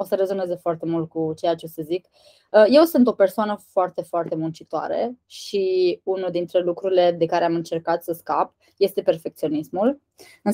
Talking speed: 175 wpm